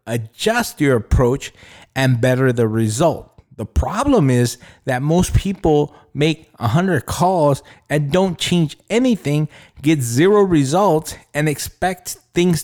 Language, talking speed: English, 130 wpm